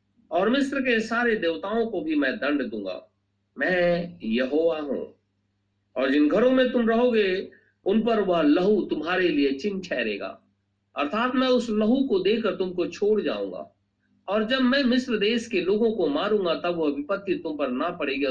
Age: 50-69